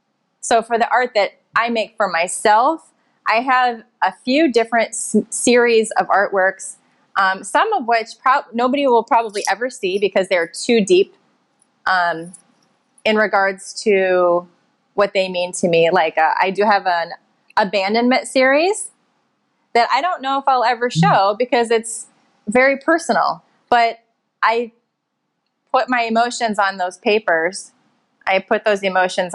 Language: English